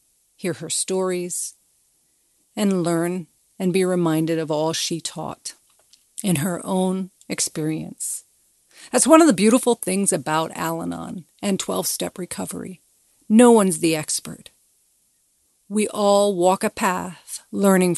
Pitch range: 175-210 Hz